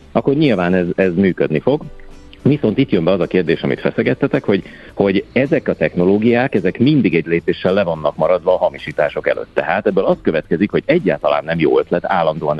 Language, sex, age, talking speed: Hungarian, male, 50-69, 190 wpm